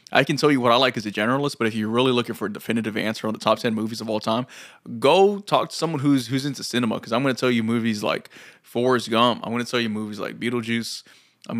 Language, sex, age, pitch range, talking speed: English, male, 20-39, 115-135 Hz, 280 wpm